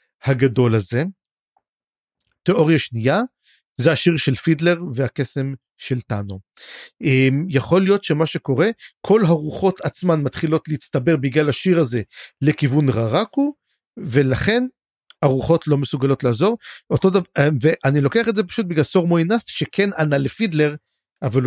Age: 50-69